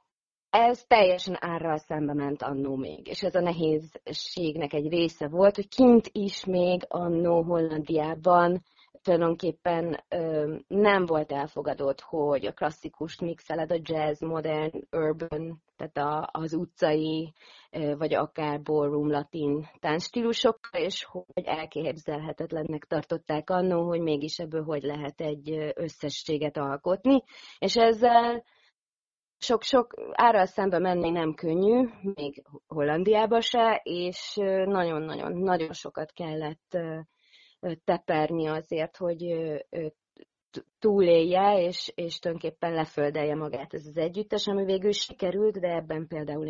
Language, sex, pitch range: Hungarian, female, 155-185 Hz